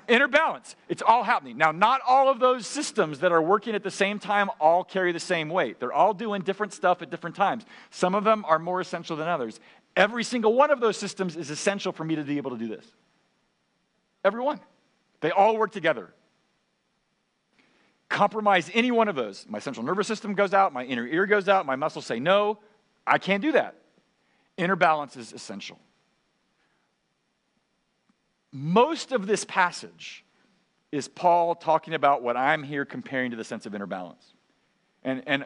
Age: 40-59